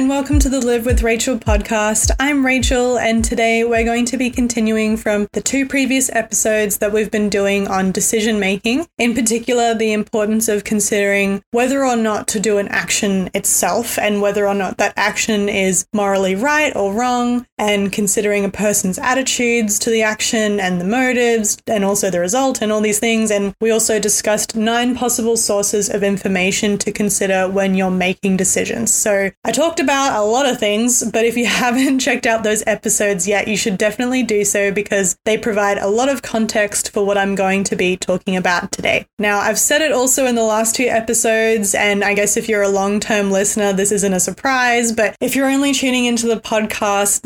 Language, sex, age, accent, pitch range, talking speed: English, female, 20-39, Australian, 205-235 Hz, 200 wpm